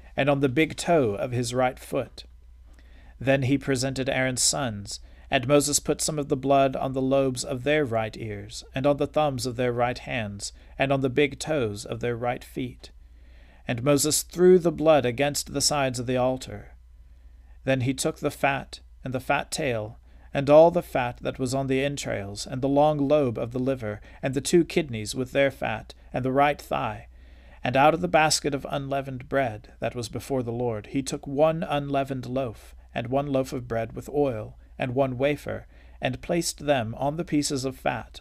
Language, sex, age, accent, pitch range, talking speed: English, male, 40-59, American, 105-140 Hz, 200 wpm